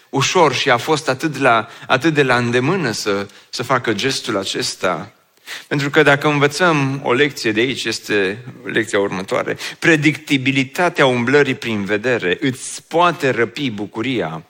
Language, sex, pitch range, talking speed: Romanian, male, 130-185 Hz, 135 wpm